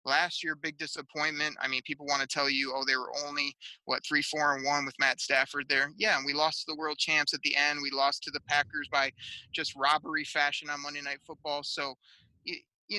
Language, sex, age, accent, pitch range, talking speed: English, male, 30-49, American, 145-165 Hz, 225 wpm